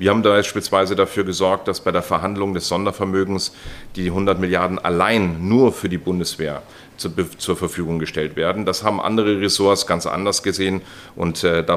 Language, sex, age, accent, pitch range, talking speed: German, male, 40-59, German, 85-100 Hz, 165 wpm